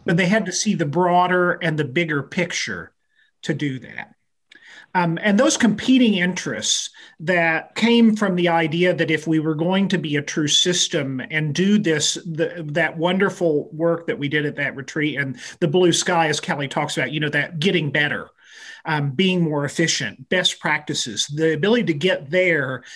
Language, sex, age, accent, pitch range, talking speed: English, male, 40-59, American, 155-185 Hz, 185 wpm